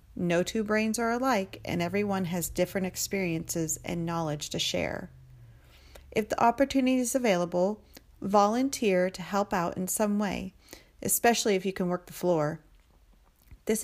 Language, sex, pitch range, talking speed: English, female, 175-215 Hz, 150 wpm